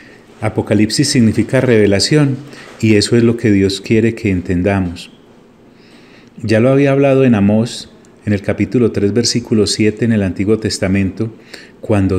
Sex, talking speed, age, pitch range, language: male, 145 wpm, 40-59, 100-125 Hz, Italian